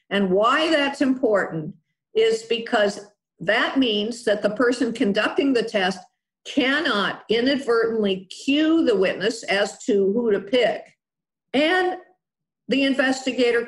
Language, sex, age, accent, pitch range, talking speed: English, female, 50-69, American, 190-265 Hz, 120 wpm